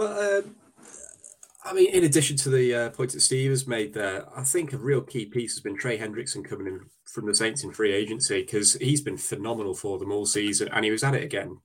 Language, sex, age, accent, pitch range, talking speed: English, male, 20-39, British, 115-150 Hz, 245 wpm